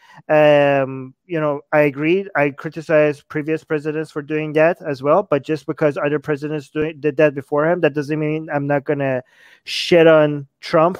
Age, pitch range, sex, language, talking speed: 30-49, 145-160 Hz, male, English, 180 wpm